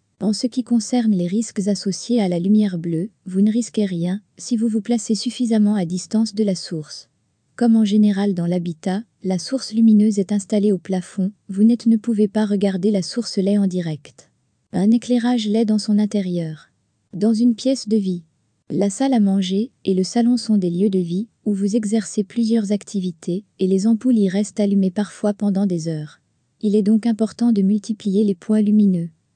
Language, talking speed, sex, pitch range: French, 190 wpm, female, 185-225 Hz